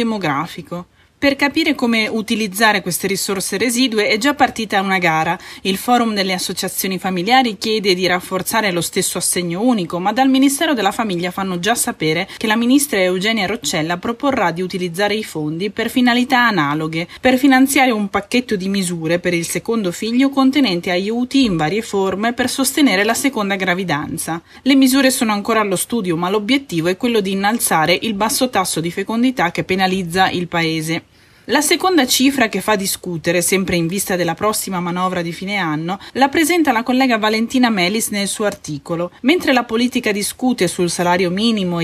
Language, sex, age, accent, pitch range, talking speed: Italian, female, 20-39, native, 180-240 Hz, 170 wpm